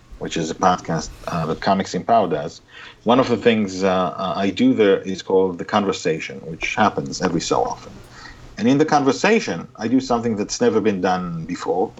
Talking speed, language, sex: 195 wpm, English, male